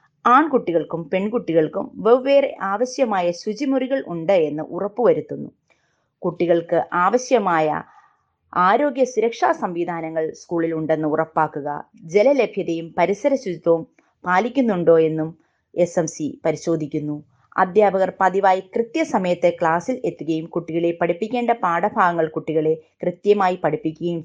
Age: 20-39